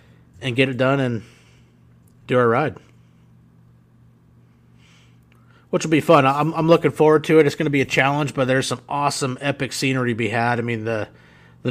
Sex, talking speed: male, 190 wpm